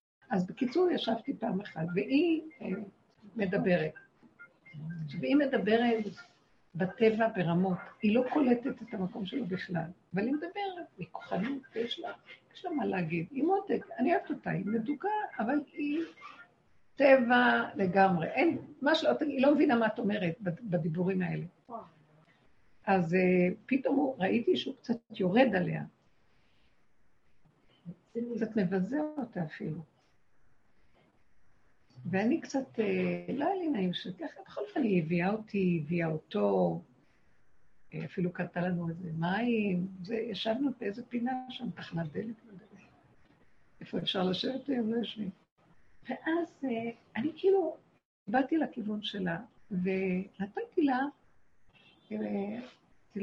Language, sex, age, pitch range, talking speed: Hebrew, female, 60-79, 180-270 Hz, 120 wpm